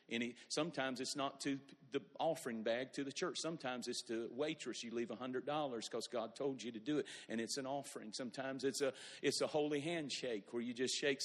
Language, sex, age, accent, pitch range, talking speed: English, male, 50-69, American, 125-160 Hz, 225 wpm